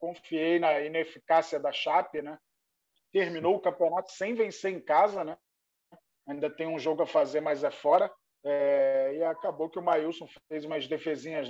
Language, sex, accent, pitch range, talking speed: Portuguese, male, Brazilian, 150-195 Hz, 165 wpm